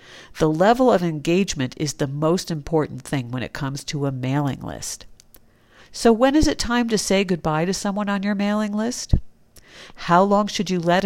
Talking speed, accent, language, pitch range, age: 190 wpm, American, English, 155-200 Hz, 50-69